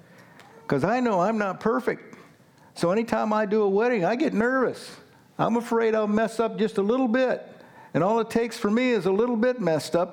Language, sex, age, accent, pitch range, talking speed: English, male, 60-79, American, 150-230 Hz, 215 wpm